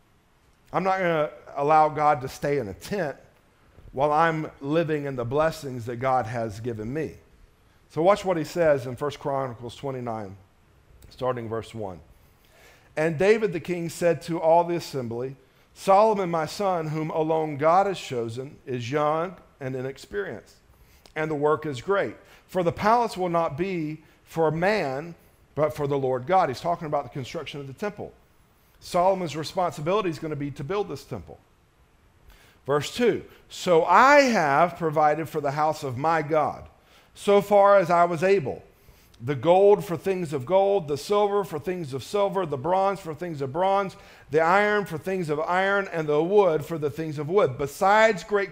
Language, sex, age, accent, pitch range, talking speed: English, male, 50-69, American, 140-195 Hz, 175 wpm